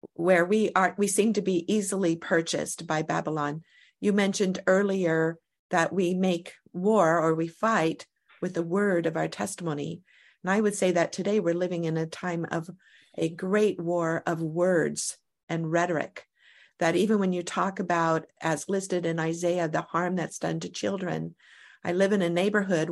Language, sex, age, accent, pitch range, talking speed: English, female, 50-69, American, 165-195 Hz, 175 wpm